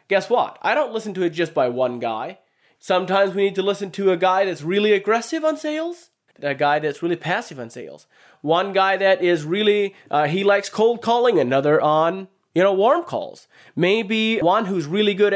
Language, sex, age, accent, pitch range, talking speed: English, male, 30-49, American, 145-205 Hz, 205 wpm